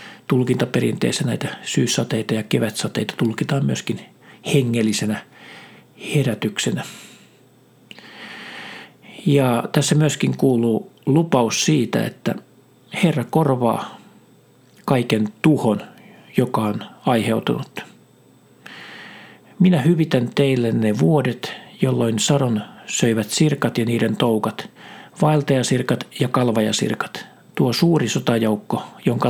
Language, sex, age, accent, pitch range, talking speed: Finnish, male, 50-69, native, 115-145 Hz, 85 wpm